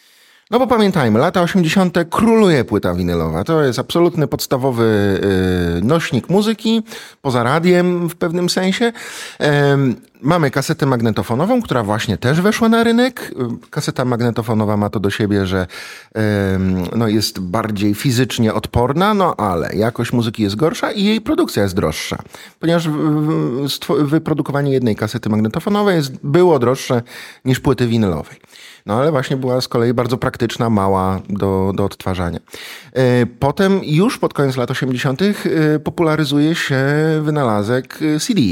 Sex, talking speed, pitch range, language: male, 130 wpm, 115-175 Hz, Polish